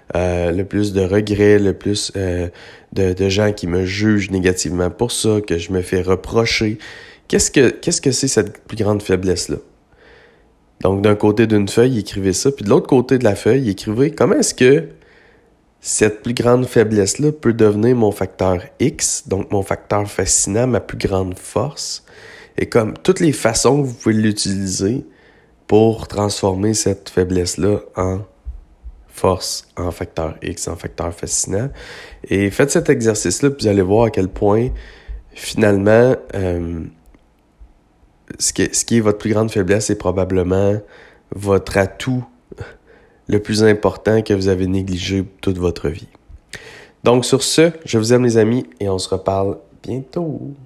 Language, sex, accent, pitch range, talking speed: French, male, Canadian, 95-110 Hz, 160 wpm